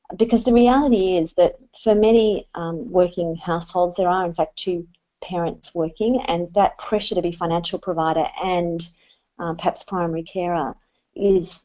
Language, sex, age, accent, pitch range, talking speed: English, female, 30-49, Australian, 165-195 Hz, 155 wpm